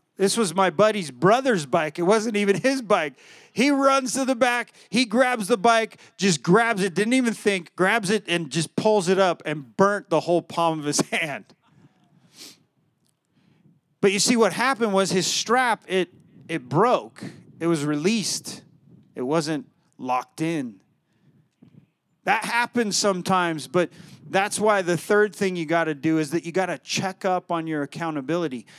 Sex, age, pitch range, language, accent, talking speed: male, 30-49, 165-205 Hz, English, American, 170 wpm